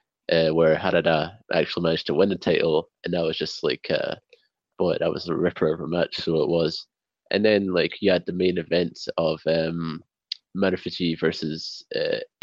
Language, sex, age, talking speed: English, male, 20-39, 190 wpm